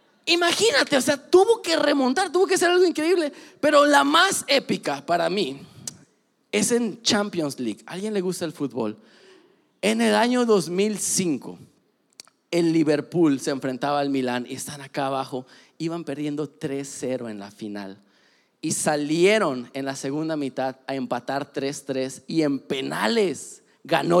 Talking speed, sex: 150 wpm, male